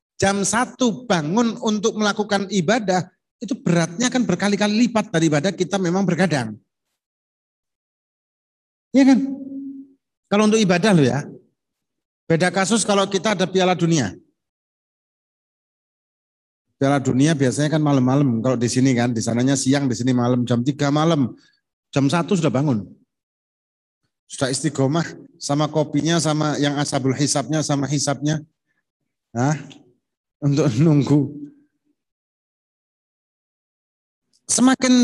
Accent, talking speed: native, 115 wpm